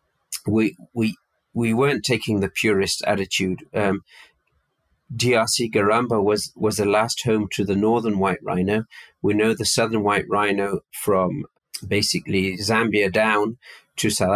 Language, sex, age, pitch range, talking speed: English, male, 40-59, 100-115 Hz, 140 wpm